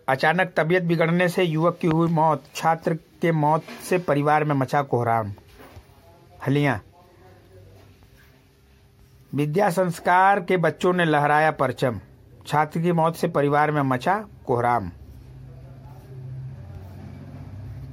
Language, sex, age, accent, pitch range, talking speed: Hindi, male, 60-79, native, 120-175 Hz, 105 wpm